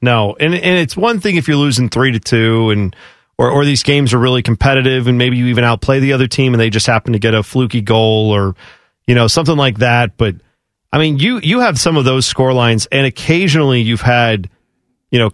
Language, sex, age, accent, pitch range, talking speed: English, male, 40-59, American, 115-145 Hz, 235 wpm